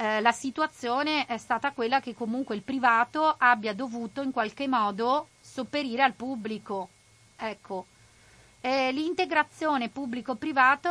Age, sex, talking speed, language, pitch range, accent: 30-49, female, 120 wpm, Italian, 210-265 Hz, native